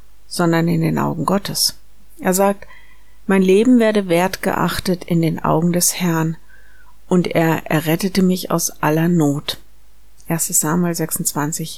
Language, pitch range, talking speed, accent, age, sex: German, 165-190 Hz, 130 wpm, German, 50-69, female